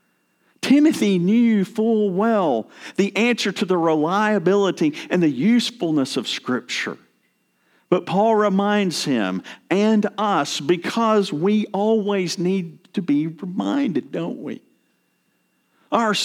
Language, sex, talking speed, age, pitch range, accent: English, male, 110 wpm, 50-69, 150-210 Hz, American